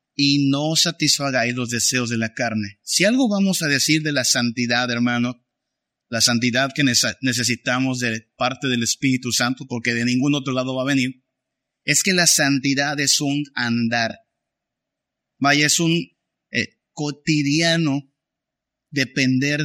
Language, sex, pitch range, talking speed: Spanish, male, 125-155 Hz, 140 wpm